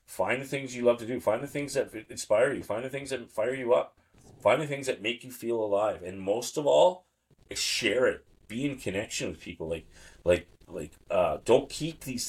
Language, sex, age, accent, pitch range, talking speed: English, male, 30-49, American, 95-135 Hz, 225 wpm